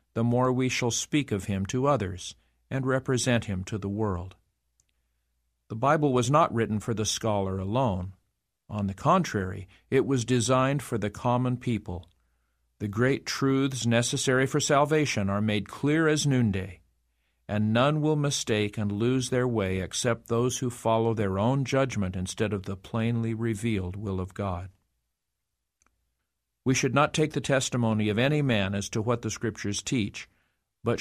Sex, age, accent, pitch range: male, 50-69, American, 100-130 Hz